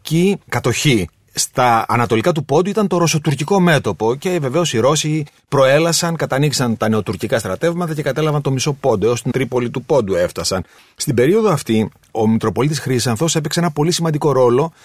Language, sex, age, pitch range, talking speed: Greek, male, 40-59, 125-175 Hz, 165 wpm